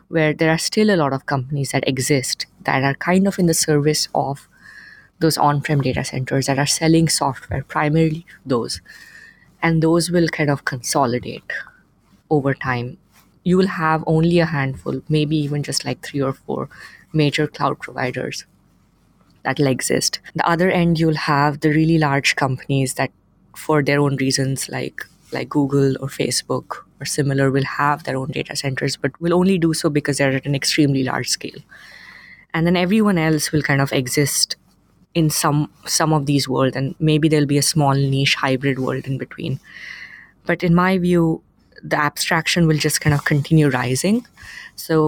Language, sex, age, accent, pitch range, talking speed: English, female, 20-39, Indian, 140-165 Hz, 175 wpm